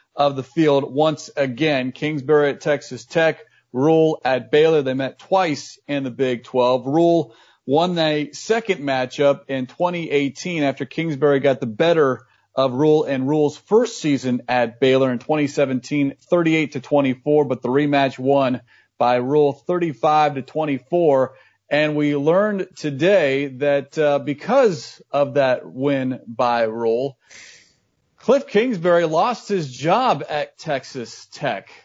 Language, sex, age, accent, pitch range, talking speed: English, male, 40-59, American, 135-170 Hz, 140 wpm